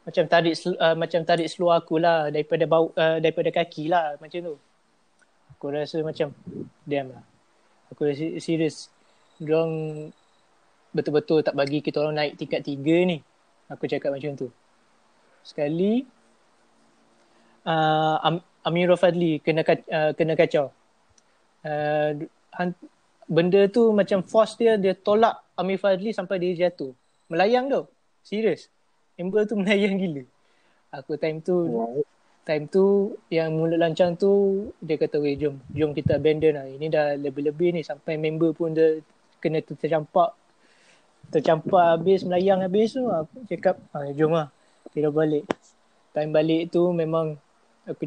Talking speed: 135 wpm